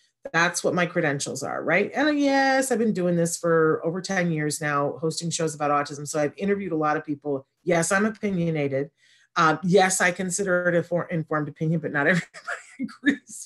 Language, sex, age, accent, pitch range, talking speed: English, female, 40-59, American, 155-200 Hz, 190 wpm